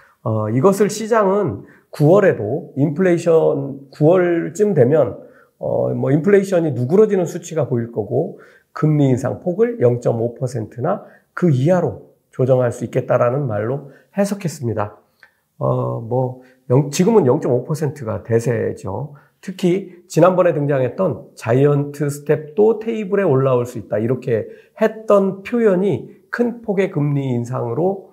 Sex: male